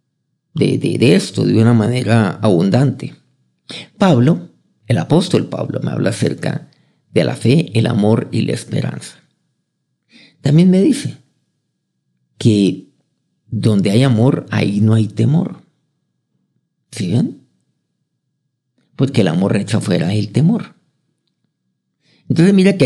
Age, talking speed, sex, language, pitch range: 50-69, 120 wpm, male, Spanish, 110-145 Hz